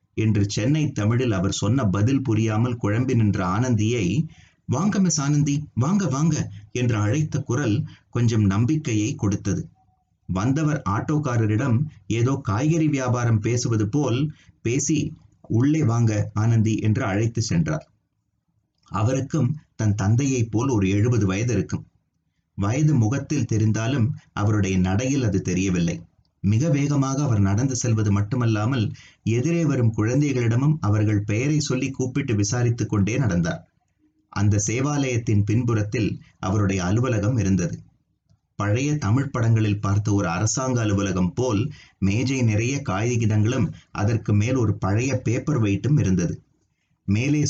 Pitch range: 105-135 Hz